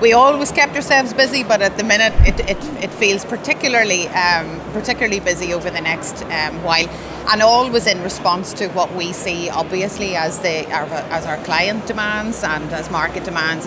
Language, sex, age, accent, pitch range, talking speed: English, female, 30-49, Irish, 160-205 Hz, 185 wpm